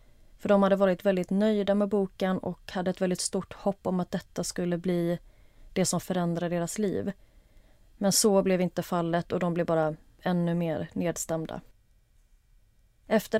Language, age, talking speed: Swedish, 30-49, 165 wpm